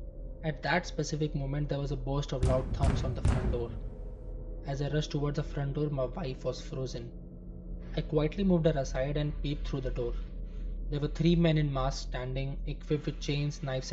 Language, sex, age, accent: English, male, 20-39, Indian